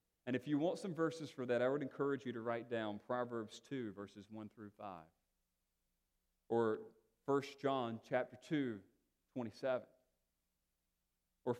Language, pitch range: English, 105-155 Hz